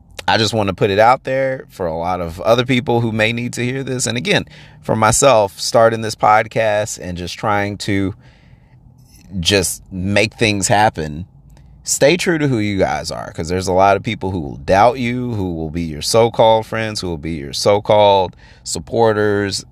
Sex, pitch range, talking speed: male, 85-115 Hz, 195 wpm